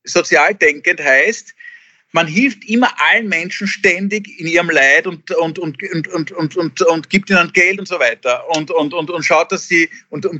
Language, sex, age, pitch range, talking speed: German, male, 50-69, 160-210 Hz, 195 wpm